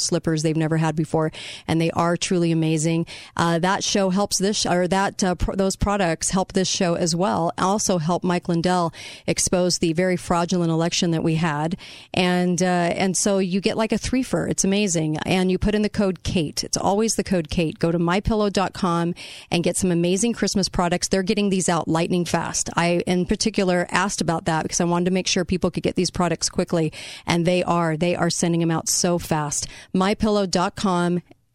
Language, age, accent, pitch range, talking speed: English, 40-59, American, 165-195 Hz, 200 wpm